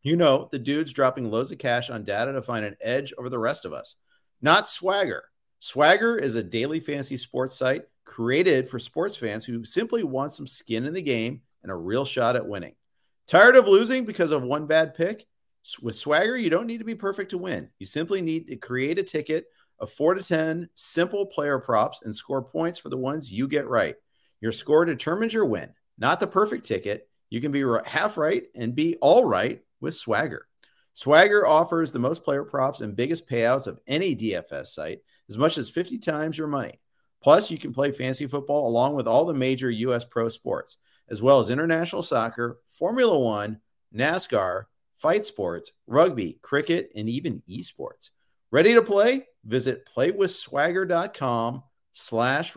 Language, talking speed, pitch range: English, 185 wpm, 125-170 Hz